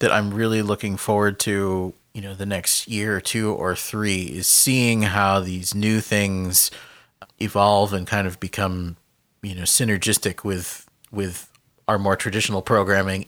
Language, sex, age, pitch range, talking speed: English, male, 30-49, 95-115 Hz, 160 wpm